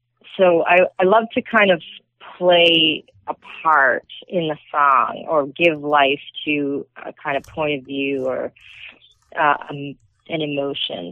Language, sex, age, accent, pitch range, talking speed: English, female, 30-49, American, 140-170 Hz, 145 wpm